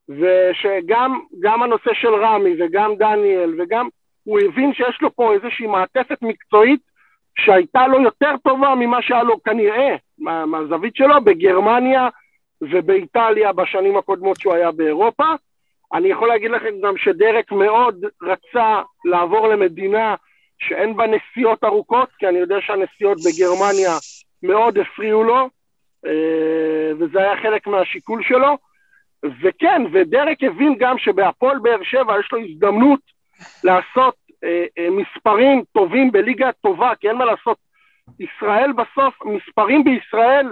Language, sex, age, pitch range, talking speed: Hebrew, male, 50-69, 195-265 Hz, 125 wpm